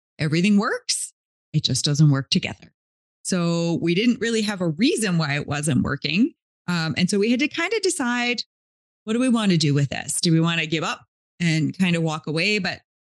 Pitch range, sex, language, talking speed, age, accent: 160-215 Hz, female, English, 215 wpm, 30-49, American